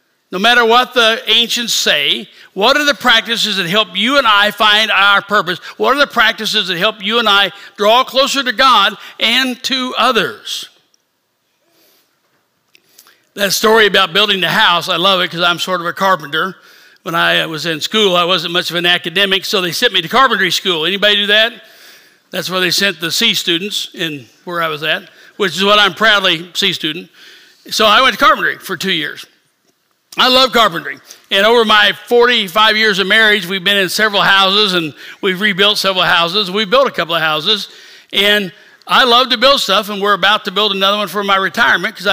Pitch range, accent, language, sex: 185-225 Hz, American, English, male